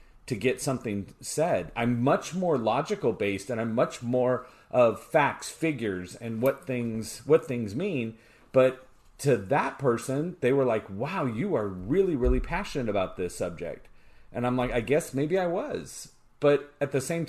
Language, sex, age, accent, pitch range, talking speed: English, male, 40-59, American, 105-130 Hz, 175 wpm